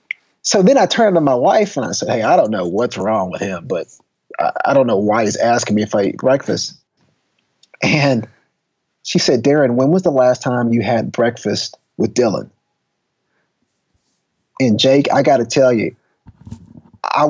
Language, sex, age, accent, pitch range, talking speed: English, male, 30-49, American, 115-140 Hz, 185 wpm